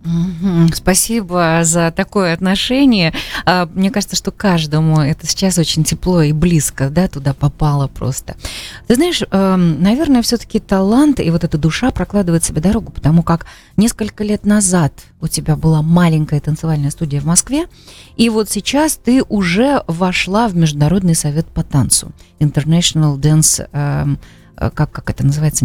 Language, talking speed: Russian, 145 wpm